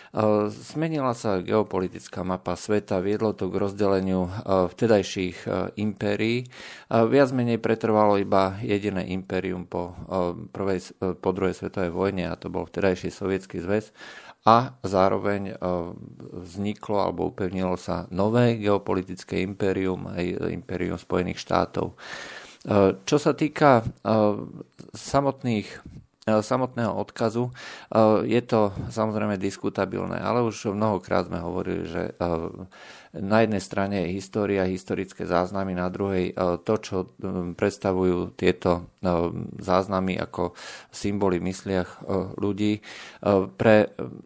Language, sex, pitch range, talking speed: Slovak, male, 95-110 Hz, 105 wpm